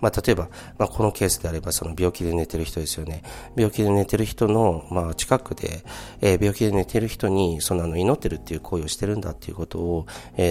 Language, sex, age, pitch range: Japanese, male, 40-59, 80-100 Hz